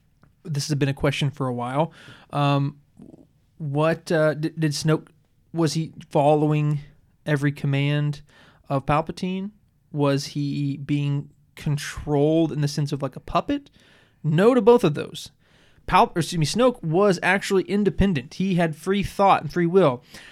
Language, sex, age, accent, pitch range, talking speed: English, male, 20-39, American, 140-170 Hz, 140 wpm